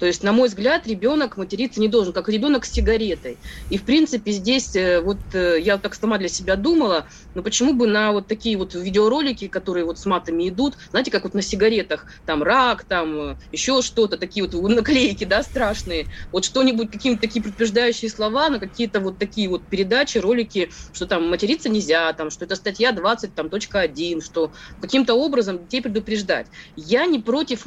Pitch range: 185-240 Hz